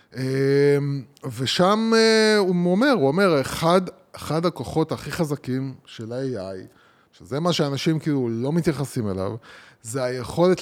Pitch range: 135-190 Hz